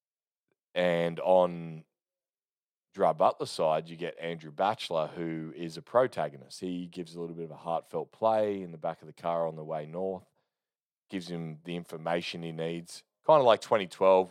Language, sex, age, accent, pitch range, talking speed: English, male, 20-39, Australian, 80-90 Hz, 175 wpm